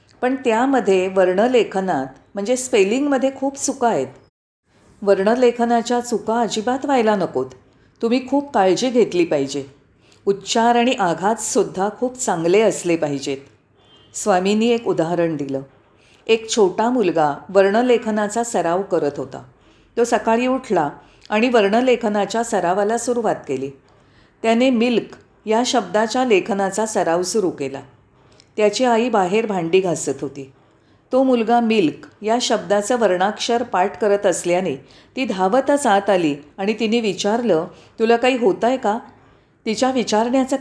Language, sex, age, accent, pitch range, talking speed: Marathi, female, 40-59, native, 170-235 Hz, 120 wpm